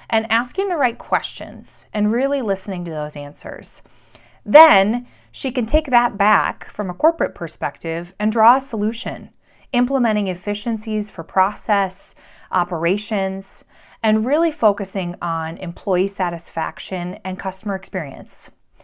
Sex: female